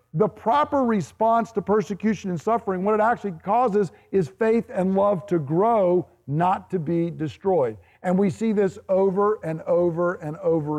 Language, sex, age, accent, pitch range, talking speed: English, male, 50-69, American, 160-205 Hz, 165 wpm